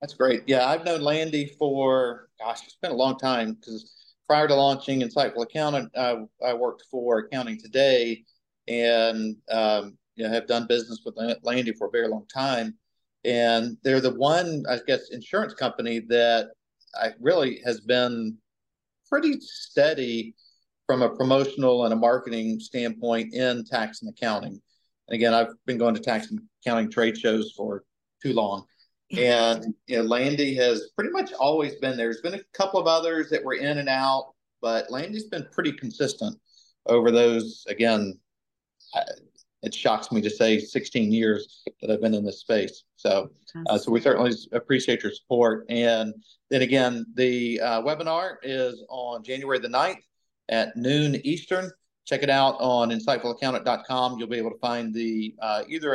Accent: American